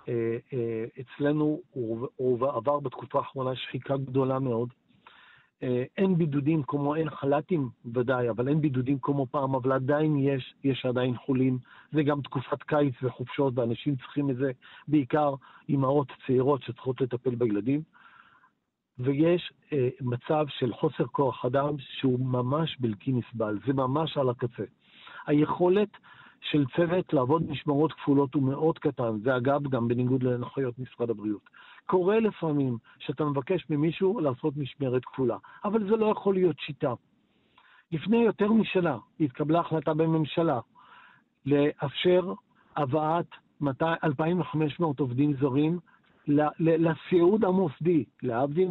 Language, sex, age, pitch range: Hebrew, male, 50-69, 130-160 Hz